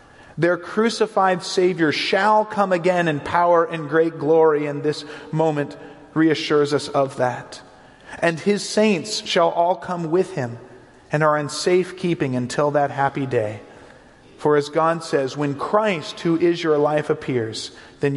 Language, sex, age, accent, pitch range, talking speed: English, male, 40-59, American, 135-175 Hz, 155 wpm